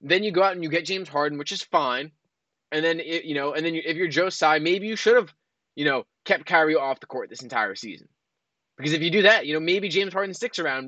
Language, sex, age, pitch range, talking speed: English, male, 20-39, 145-195 Hz, 265 wpm